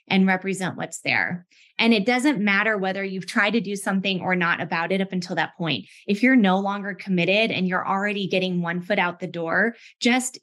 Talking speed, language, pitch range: 215 wpm, English, 180-205 Hz